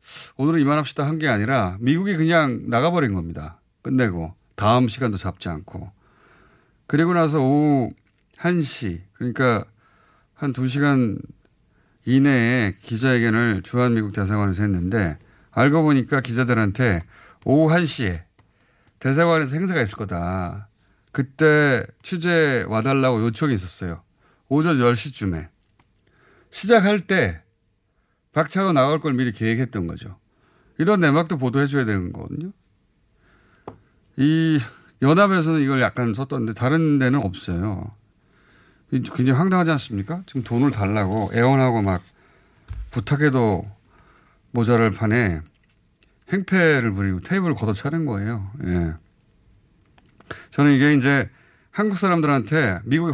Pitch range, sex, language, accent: 100-150 Hz, male, Korean, native